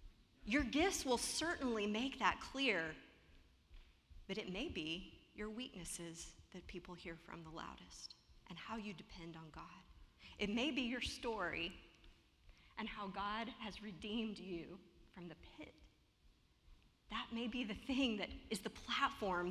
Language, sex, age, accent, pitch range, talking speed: English, female, 30-49, American, 180-250 Hz, 150 wpm